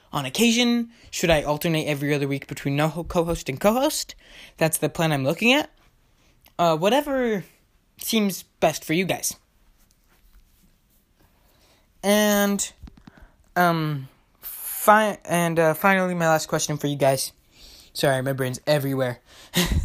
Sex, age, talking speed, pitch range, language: male, 20-39, 125 wpm, 145-200 Hz, English